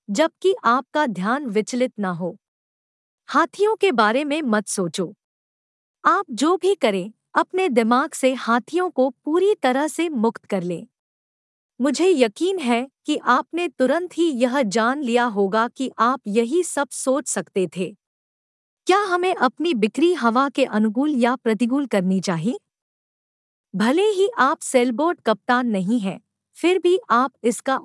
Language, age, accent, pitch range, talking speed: Hindi, 50-69, native, 220-305 Hz, 145 wpm